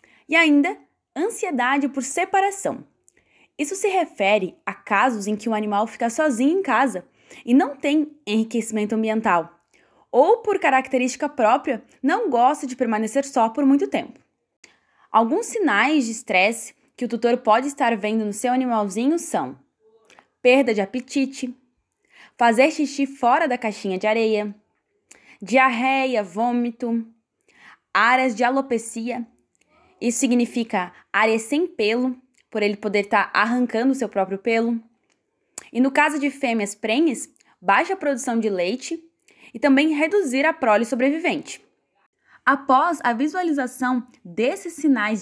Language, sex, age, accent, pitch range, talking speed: Portuguese, female, 10-29, Brazilian, 225-295 Hz, 130 wpm